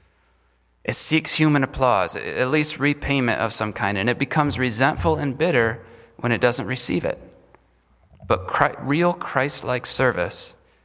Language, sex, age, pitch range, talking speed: English, male, 30-49, 105-145 Hz, 145 wpm